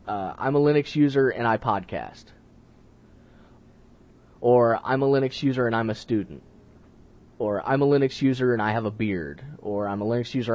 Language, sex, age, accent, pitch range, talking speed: English, male, 20-39, American, 115-145 Hz, 180 wpm